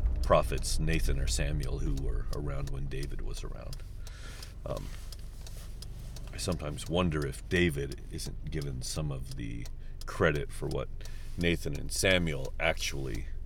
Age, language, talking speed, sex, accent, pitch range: 40-59, English, 130 wpm, male, American, 70-95 Hz